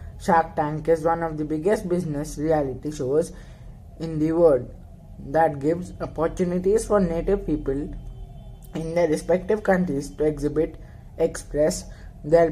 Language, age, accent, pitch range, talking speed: English, 20-39, Indian, 125-180 Hz, 130 wpm